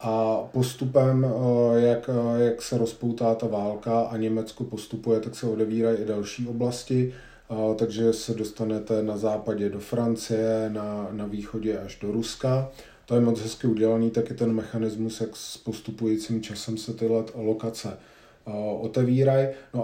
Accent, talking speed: native, 140 wpm